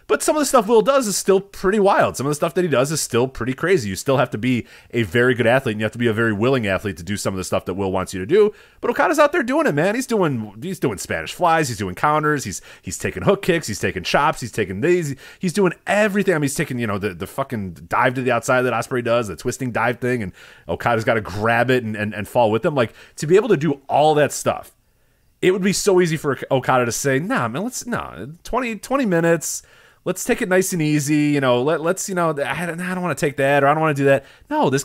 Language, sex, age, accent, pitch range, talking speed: English, male, 30-49, American, 105-160 Hz, 290 wpm